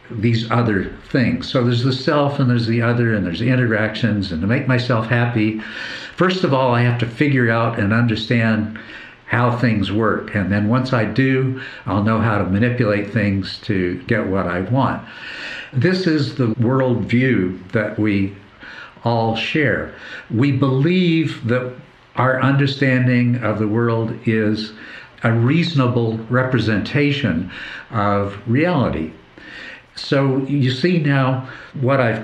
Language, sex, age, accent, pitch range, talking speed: English, male, 60-79, American, 110-130 Hz, 145 wpm